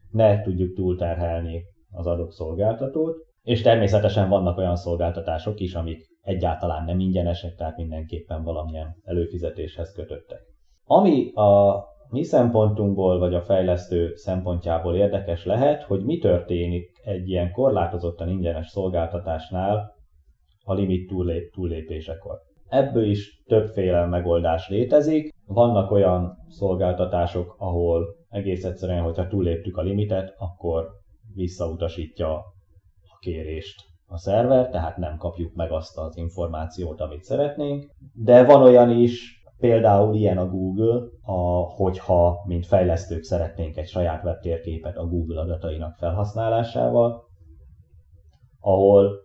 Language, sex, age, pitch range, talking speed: Hungarian, male, 20-39, 85-100 Hz, 110 wpm